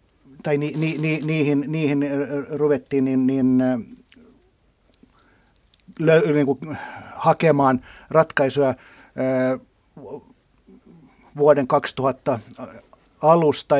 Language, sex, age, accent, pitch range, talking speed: Finnish, male, 50-69, native, 125-155 Hz, 70 wpm